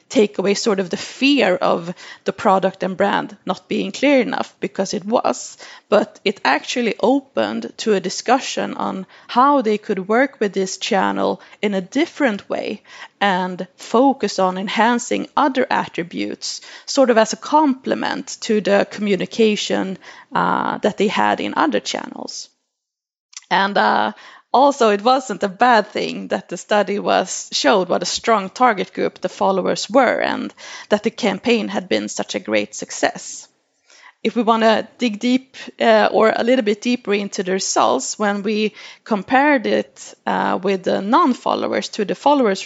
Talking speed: 160 wpm